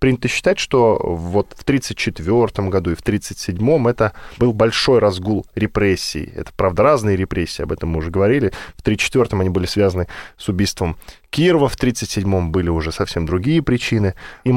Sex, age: male, 10-29